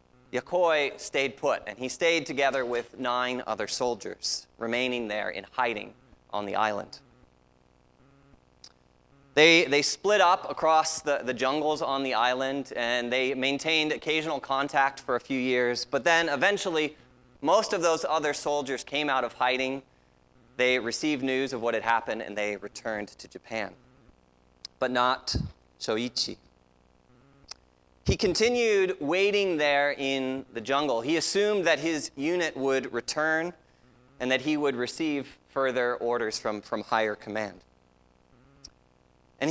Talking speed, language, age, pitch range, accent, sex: 140 wpm, English, 30-49, 105-150 Hz, American, male